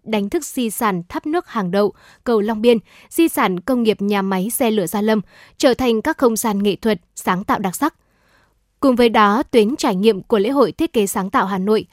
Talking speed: 235 wpm